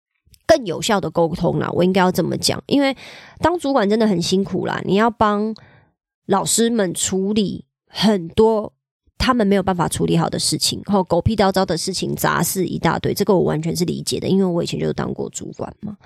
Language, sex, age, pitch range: Chinese, male, 20-39, 180-220 Hz